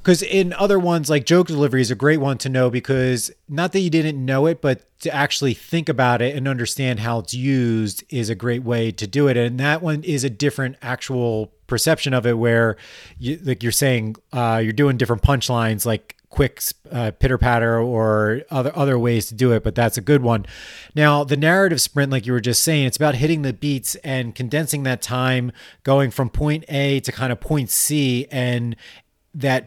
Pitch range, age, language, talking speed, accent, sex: 120-145 Hz, 30-49, English, 210 wpm, American, male